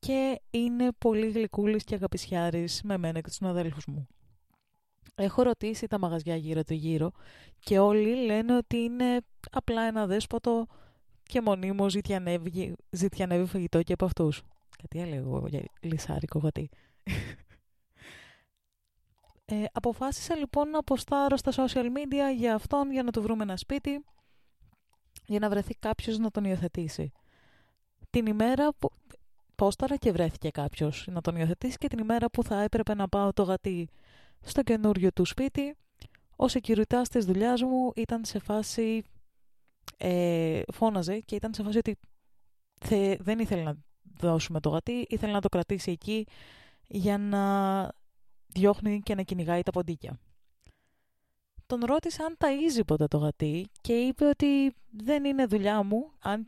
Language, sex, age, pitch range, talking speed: Greek, female, 20-39, 170-235 Hz, 140 wpm